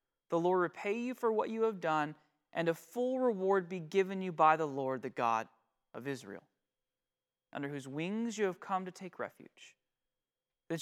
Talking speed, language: 185 wpm, English